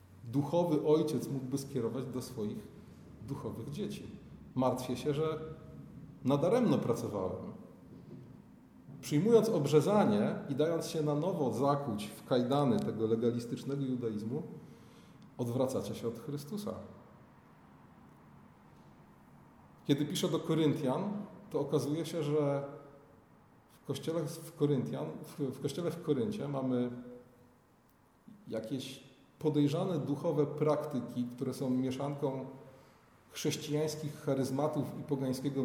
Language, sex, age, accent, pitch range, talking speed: Polish, male, 40-59, native, 130-160 Hz, 95 wpm